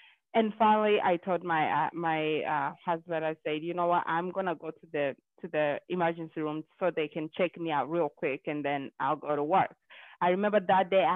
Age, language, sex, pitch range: 20-39, English, female, 155-180 Hz